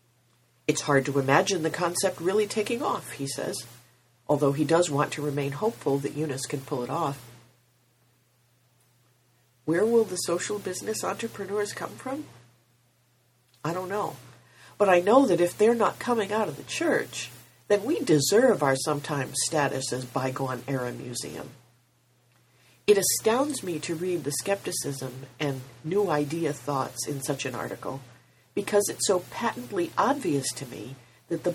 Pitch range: 125-205 Hz